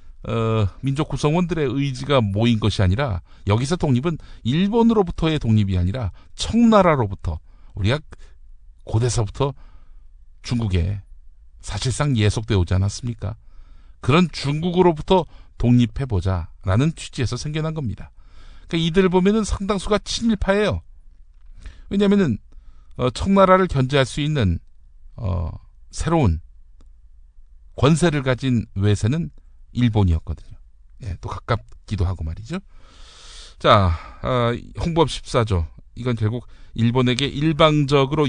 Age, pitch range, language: 50-69, 90-150 Hz, Korean